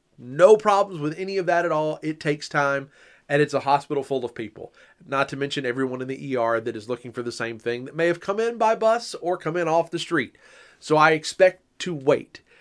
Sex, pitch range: male, 135-185 Hz